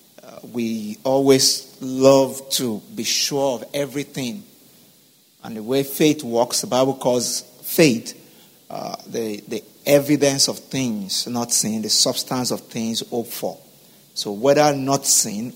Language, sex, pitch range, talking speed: English, male, 115-145 Hz, 135 wpm